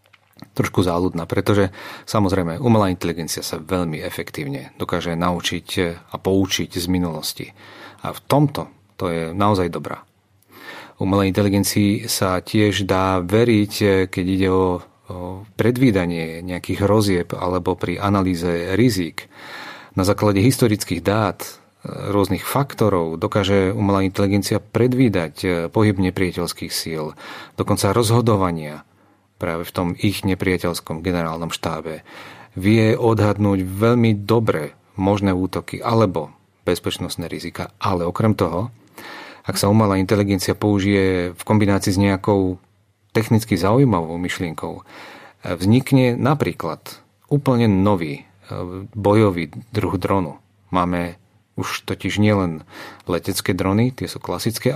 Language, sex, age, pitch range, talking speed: Czech, male, 40-59, 90-105 Hz, 110 wpm